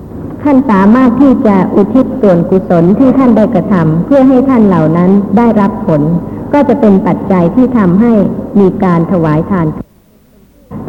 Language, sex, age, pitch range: Thai, male, 60-79, 185-240 Hz